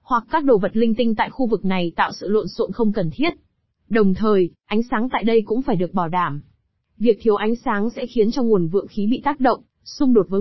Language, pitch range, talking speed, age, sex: Vietnamese, 190-240 Hz, 255 wpm, 20-39, female